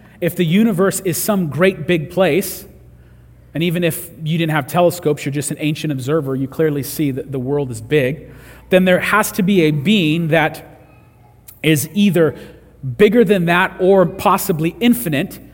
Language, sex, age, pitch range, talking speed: English, male, 40-59, 150-190 Hz, 170 wpm